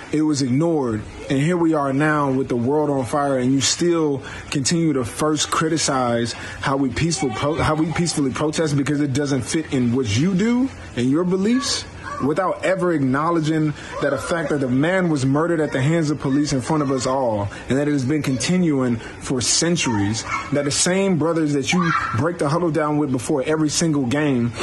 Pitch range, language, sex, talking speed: 130-155 Hz, English, male, 200 wpm